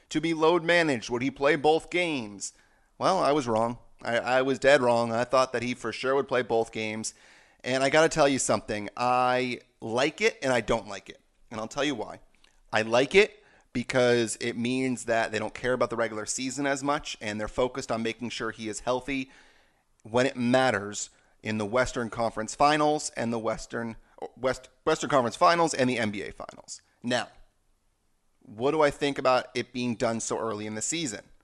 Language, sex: English, male